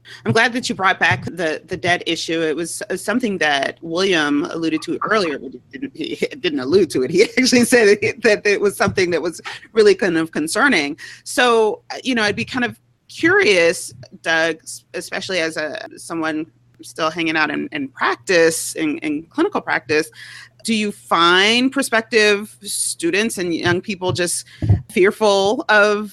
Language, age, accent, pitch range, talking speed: English, 30-49, American, 165-225 Hz, 170 wpm